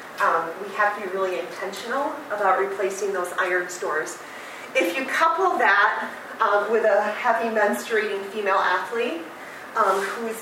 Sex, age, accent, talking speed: female, 40-59, American, 145 wpm